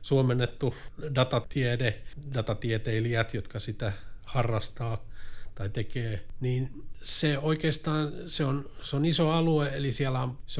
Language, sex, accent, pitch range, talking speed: Finnish, male, native, 110-130 Hz, 120 wpm